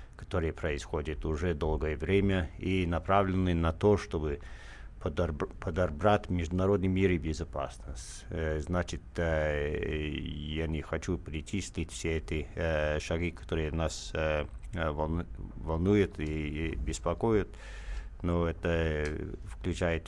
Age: 50-69